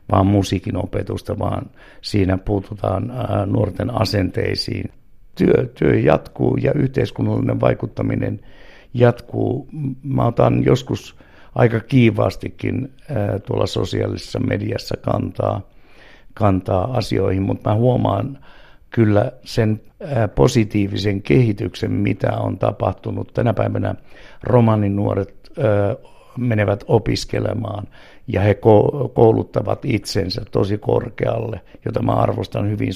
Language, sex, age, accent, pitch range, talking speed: Finnish, male, 60-79, native, 100-125 Hz, 95 wpm